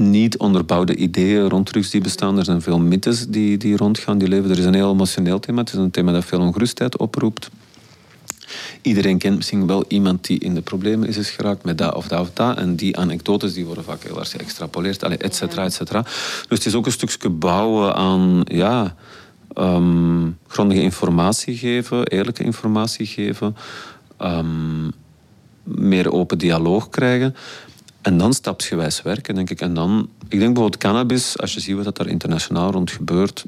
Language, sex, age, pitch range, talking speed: Dutch, male, 40-59, 90-105 Hz, 180 wpm